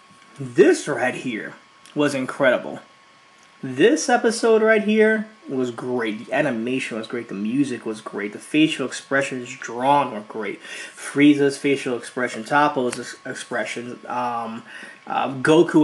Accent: American